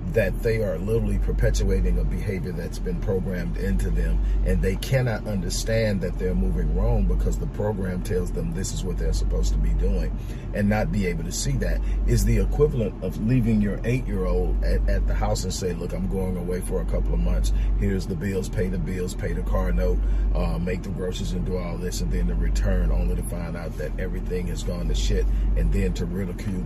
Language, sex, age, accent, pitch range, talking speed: English, male, 40-59, American, 90-105 Hz, 225 wpm